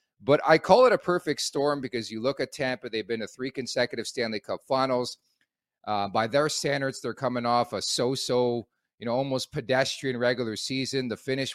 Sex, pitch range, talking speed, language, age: male, 110-135 Hz, 190 wpm, English, 40-59